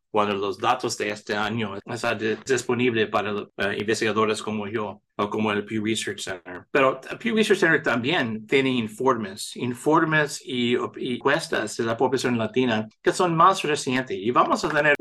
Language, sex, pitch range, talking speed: English, male, 110-145 Hz, 170 wpm